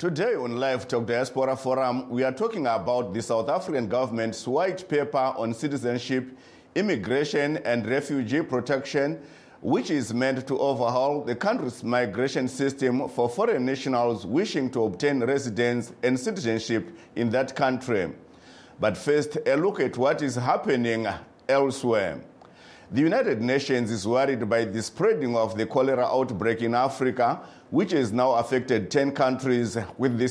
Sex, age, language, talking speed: male, 50-69, English, 145 wpm